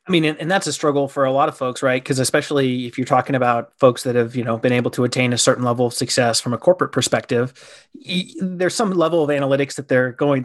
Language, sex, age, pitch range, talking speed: English, male, 30-49, 130-155 Hz, 260 wpm